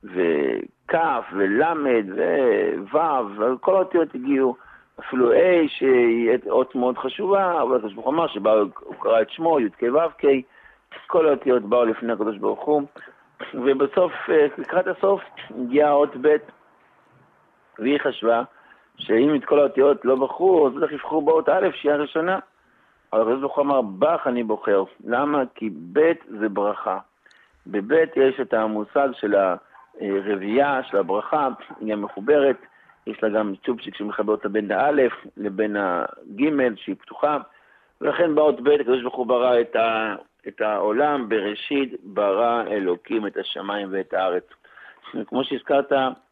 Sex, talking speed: male, 130 wpm